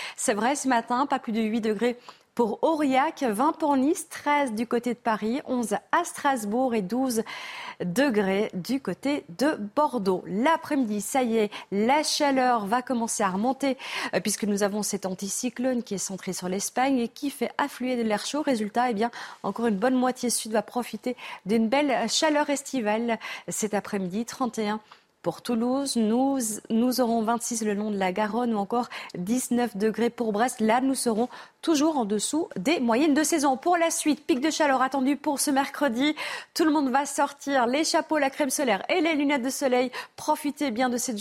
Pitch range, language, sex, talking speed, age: 225-275 Hz, French, female, 190 wpm, 40-59